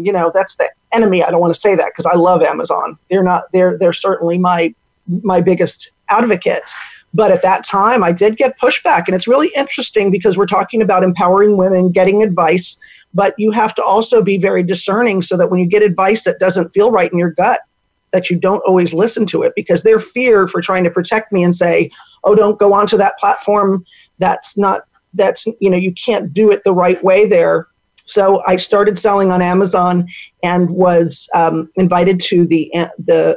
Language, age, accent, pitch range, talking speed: English, 40-59, American, 175-205 Hz, 205 wpm